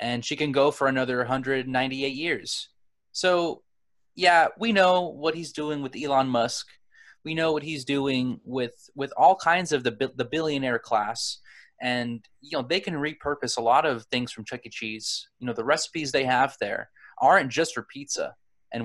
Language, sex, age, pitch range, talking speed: English, male, 20-39, 125-165 Hz, 185 wpm